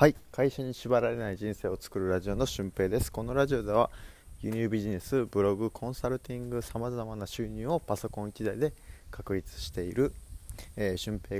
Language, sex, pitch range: Japanese, male, 95-130 Hz